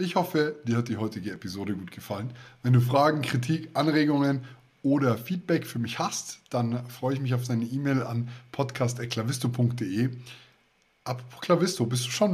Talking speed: 160 wpm